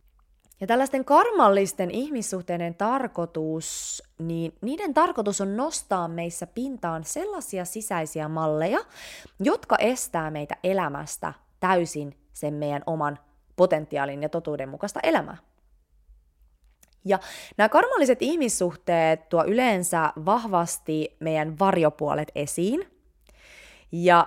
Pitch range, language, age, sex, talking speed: 150-220 Hz, Finnish, 20-39, female, 95 wpm